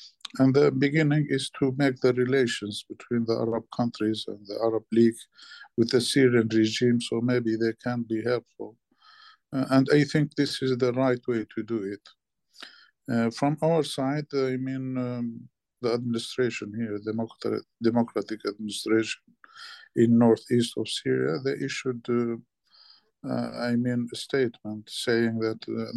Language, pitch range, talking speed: English, 110-130 Hz, 150 wpm